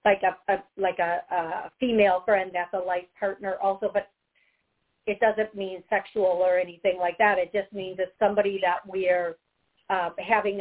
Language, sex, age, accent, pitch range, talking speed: English, female, 50-69, American, 195-245 Hz, 180 wpm